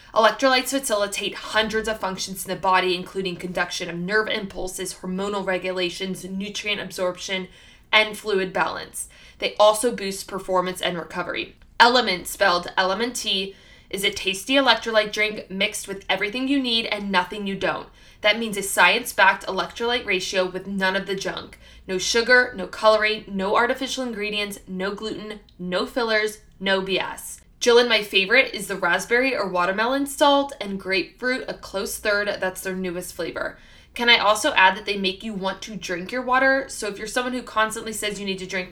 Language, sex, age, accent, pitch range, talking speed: English, female, 20-39, American, 185-215 Hz, 170 wpm